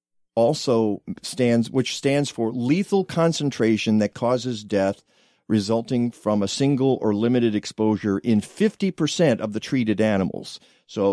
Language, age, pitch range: English, 50-69, 105-130 Hz